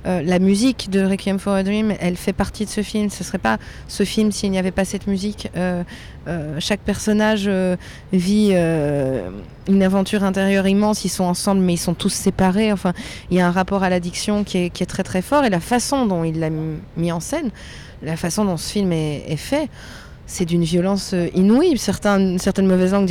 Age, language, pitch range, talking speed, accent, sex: 20-39, French, 170-200 Hz, 225 wpm, French, female